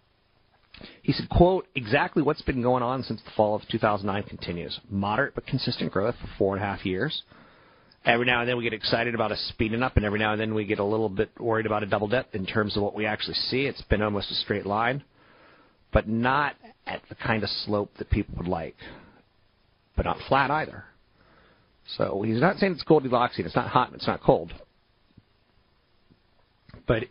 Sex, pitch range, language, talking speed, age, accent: male, 100-125 Hz, English, 205 wpm, 40-59, American